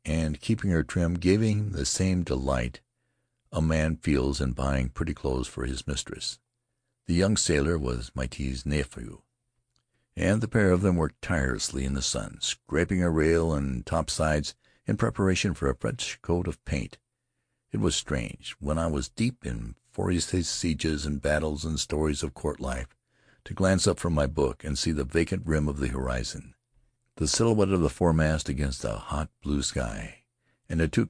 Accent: American